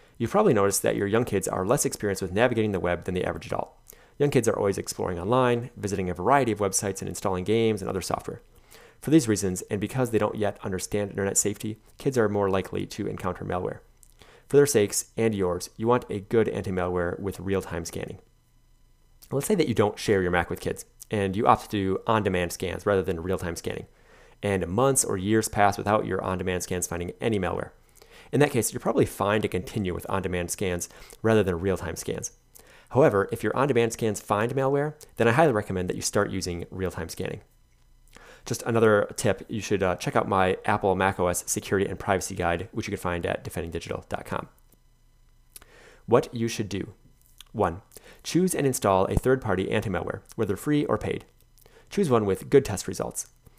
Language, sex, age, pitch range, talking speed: English, male, 30-49, 95-115 Hz, 195 wpm